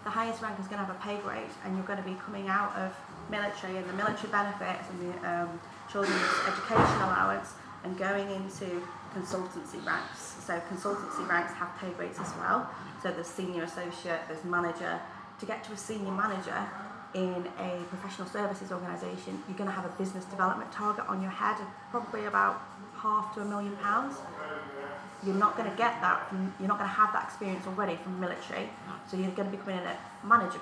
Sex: female